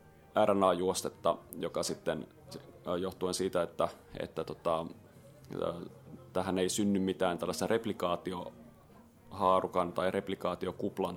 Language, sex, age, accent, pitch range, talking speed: Finnish, male, 30-49, native, 90-100 Hz, 85 wpm